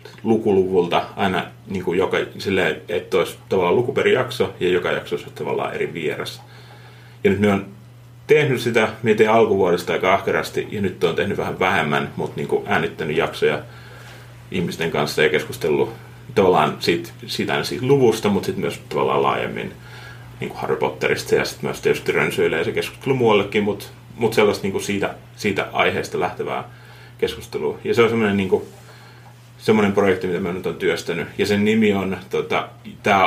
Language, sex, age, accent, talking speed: Finnish, male, 30-49, native, 165 wpm